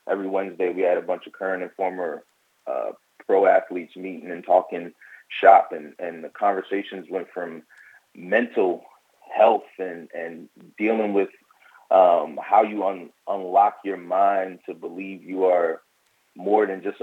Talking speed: 150 wpm